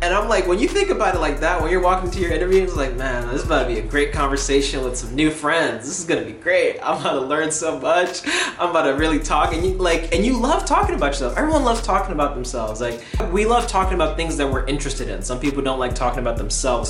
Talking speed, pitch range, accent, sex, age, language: 275 wpm, 130-170 Hz, American, male, 20-39, English